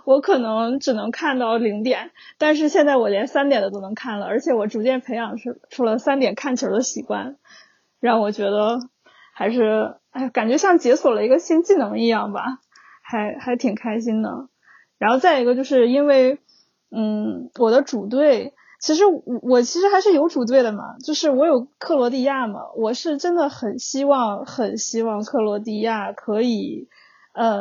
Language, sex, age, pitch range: Chinese, female, 20-39, 230-285 Hz